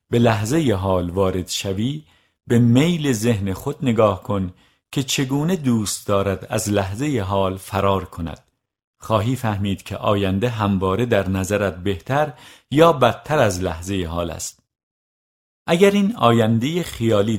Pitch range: 100-130 Hz